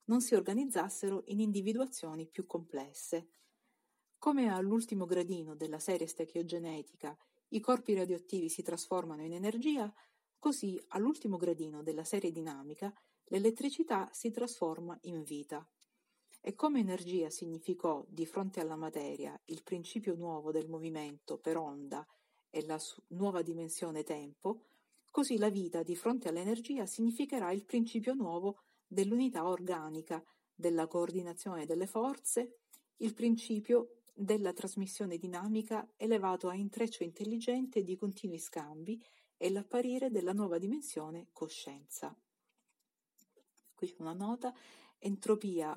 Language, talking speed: Italian, 115 wpm